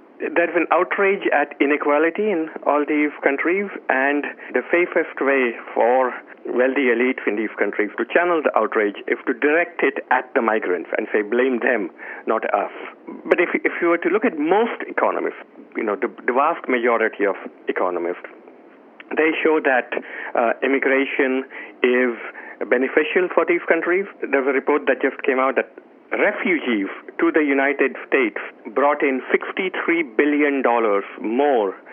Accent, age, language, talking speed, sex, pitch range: Indian, 50-69, English, 155 wpm, male, 130-185 Hz